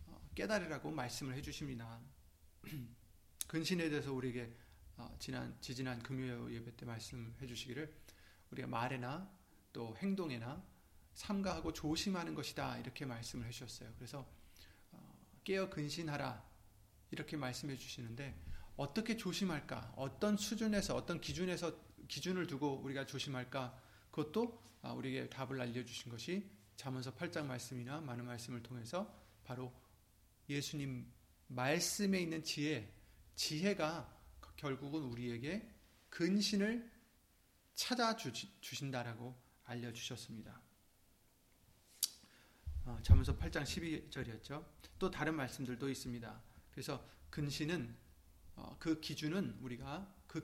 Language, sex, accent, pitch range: Korean, male, native, 120-160 Hz